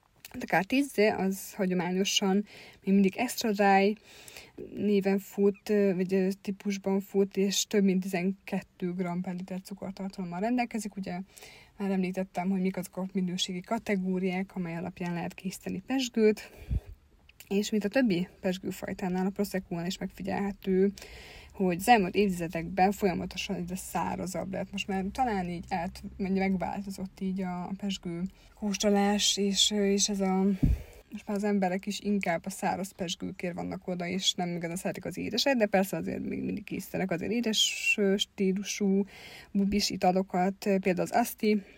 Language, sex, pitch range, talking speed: Hungarian, female, 185-205 Hz, 140 wpm